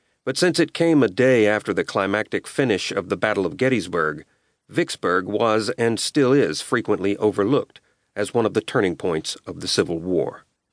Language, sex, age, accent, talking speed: English, male, 40-59, American, 180 wpm